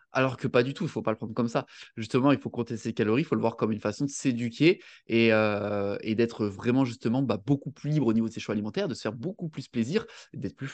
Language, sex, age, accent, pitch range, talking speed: French, male, 20-39, French, 110-140 Hz, 295 wpm